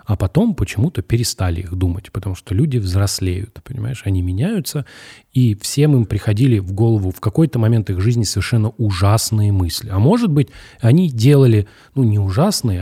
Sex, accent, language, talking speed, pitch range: male, native, Russian, 165 wpm, 100-125 Hz